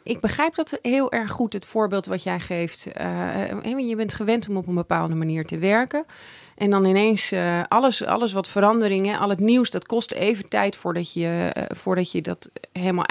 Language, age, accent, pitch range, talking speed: Dutch, 30-49, Dutch, 180-220 Hz, 190 wpm